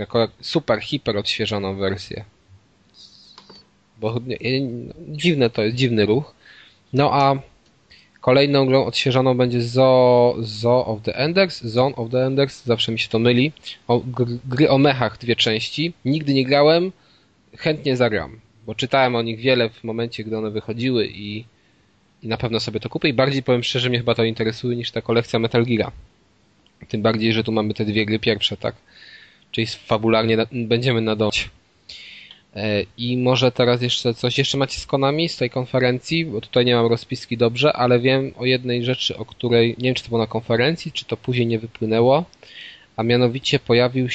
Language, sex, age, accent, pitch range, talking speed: Polish, male, 20-39, native, 110-125 Hz, 170 wpm